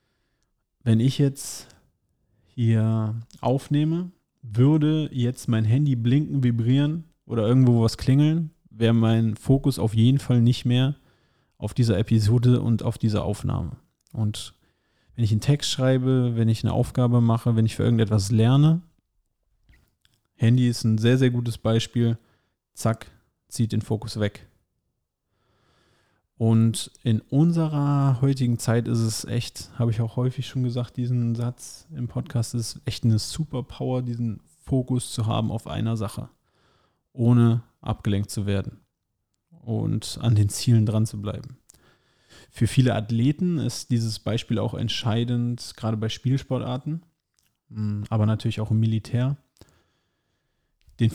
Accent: German